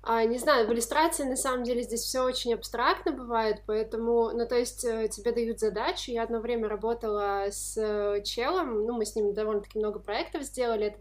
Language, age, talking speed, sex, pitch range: Russian, 20-39, 185 wpm, female, 215-250 Hz